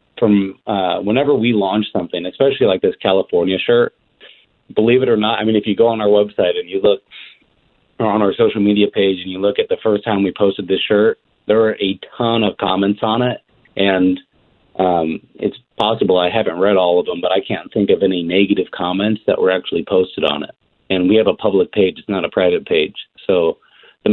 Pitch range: 95-120 Hz